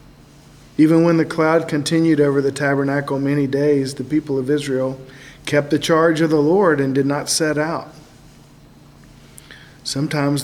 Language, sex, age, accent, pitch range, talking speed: English, male, 50-69, American, 135-160 Hz, 150 wpm